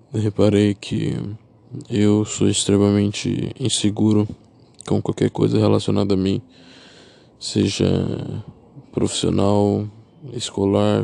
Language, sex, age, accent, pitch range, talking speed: Portuguese, male, 20-39, Brazilian, 100-115 Hz, 80 wpm